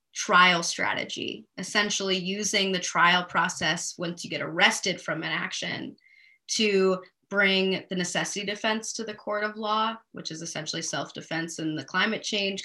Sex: female